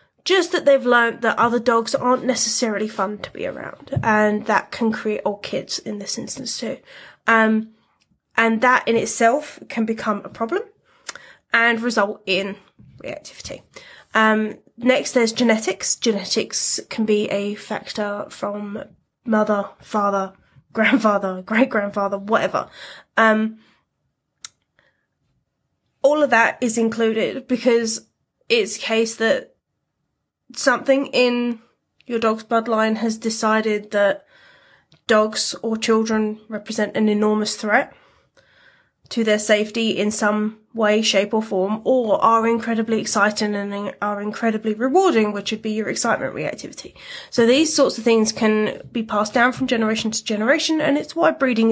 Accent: British